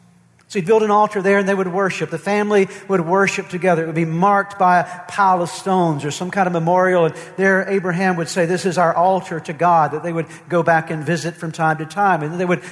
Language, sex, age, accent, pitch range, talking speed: English, male, 50-69, American, 160-185 Hz, 260 wpm